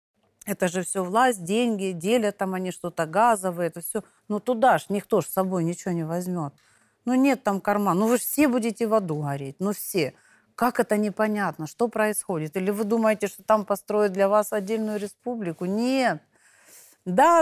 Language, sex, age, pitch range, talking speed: Russian, female, 40-59, 170-225 Hz, 185 wpm